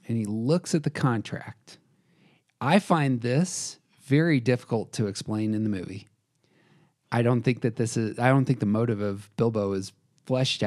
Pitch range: 105-145 Hz